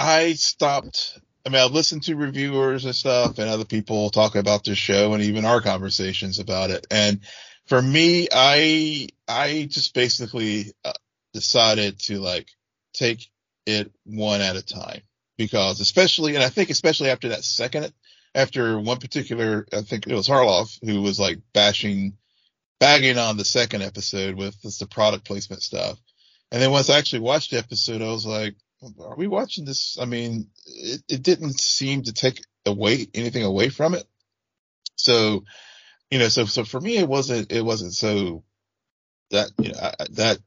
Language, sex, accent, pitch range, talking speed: English, male, American, 105-130 Hz, 170 wpm